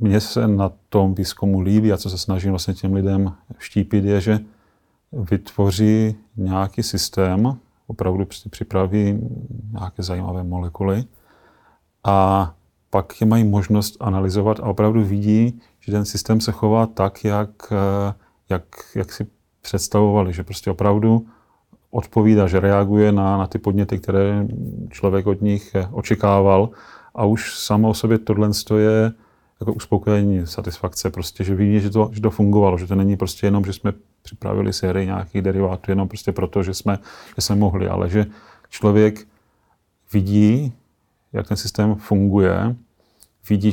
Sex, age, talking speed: male, 30-49, 145 wpm